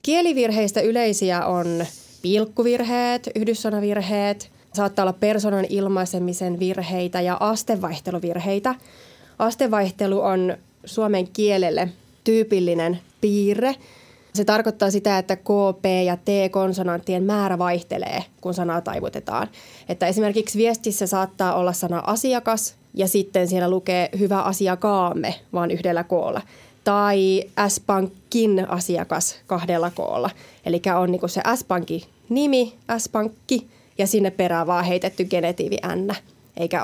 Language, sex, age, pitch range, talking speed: Finnish, female, 20-39, 180-220 Hz, 110 wpm